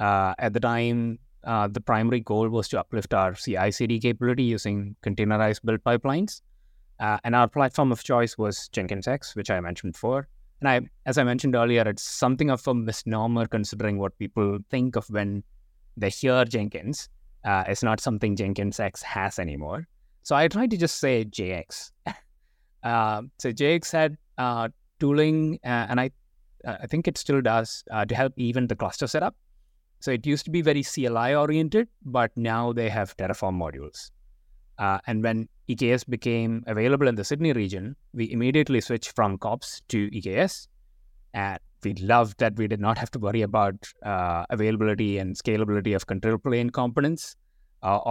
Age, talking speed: 20-39, 170 wpm